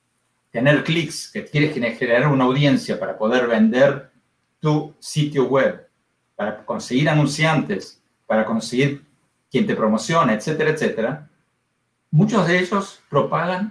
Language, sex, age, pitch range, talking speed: Spanish, male, 50-69, 125-180 Hz, 125 wpm